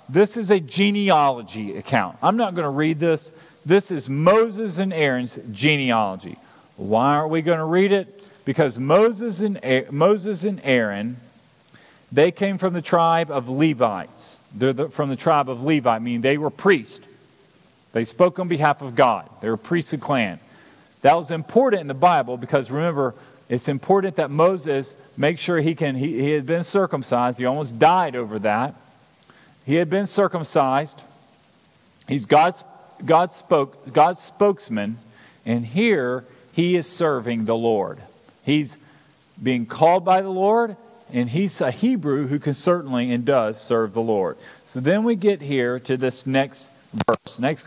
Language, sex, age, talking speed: English, male, 40-59, 155 wpm